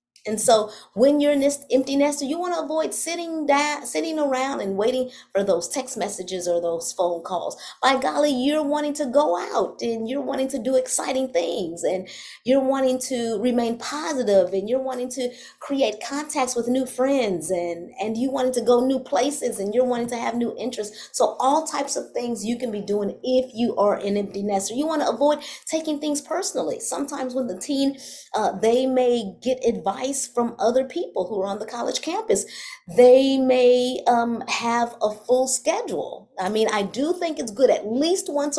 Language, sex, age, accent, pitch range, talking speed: English, female, 30-49, American, 220-280 Hz, 195 wpm